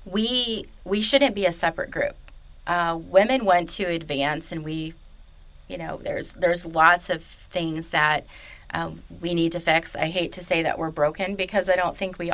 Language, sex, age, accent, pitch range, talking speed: English, female, 30-49, American, 160-185 Hz, 190 wpm